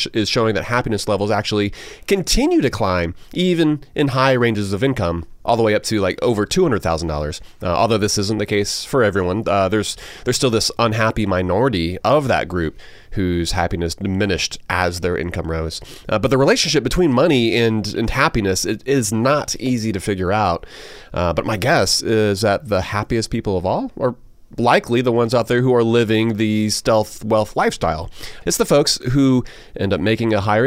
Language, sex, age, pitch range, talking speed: English, male, 30-49, 95-125 Hz, 190 wpm